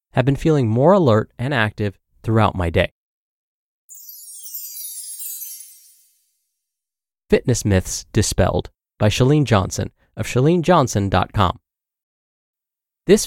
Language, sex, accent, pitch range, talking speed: English, male, American, 100-145 Hz, 85 wpm